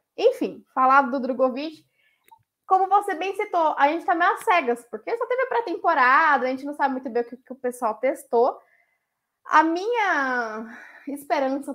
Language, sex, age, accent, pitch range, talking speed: Portuguese, female, 10-29, Brazilian, 250-305 Hz, 175 wpm